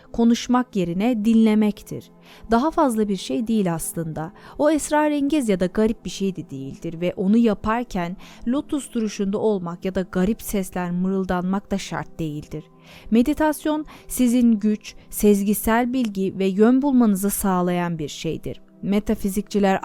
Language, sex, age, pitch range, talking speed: Turkish, female, 30-49, 180-235 Hz, 135 wpm